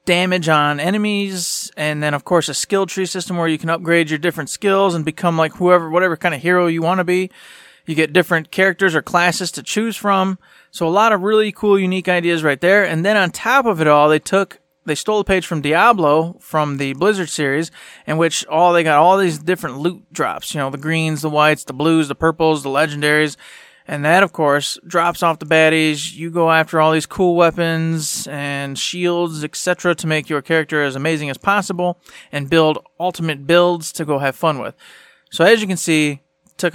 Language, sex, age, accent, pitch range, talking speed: English, male, 30-49, American, 155-180 Hz, 215 wpm